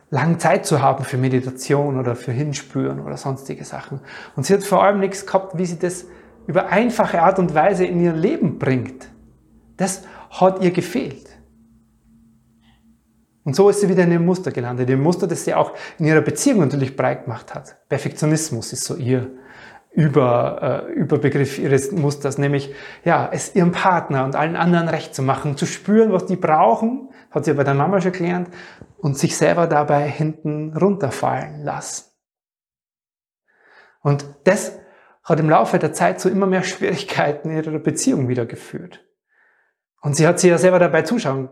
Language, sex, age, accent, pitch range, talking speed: German, male, 30-49, German, 140-185 Hz, 170 wpm